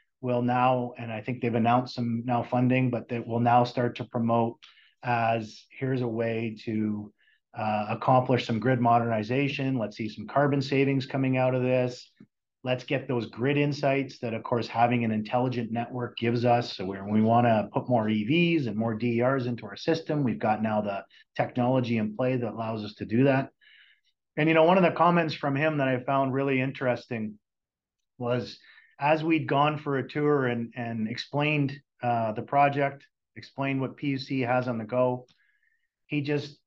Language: English